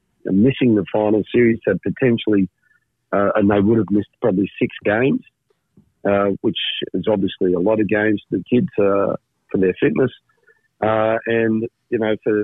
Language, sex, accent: English, male, Australian